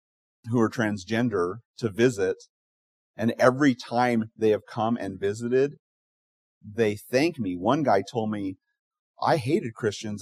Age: 40-59